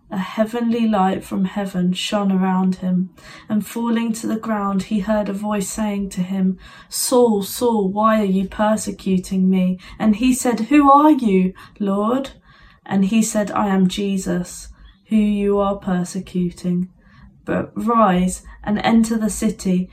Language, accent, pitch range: English, British, 190-225 Hz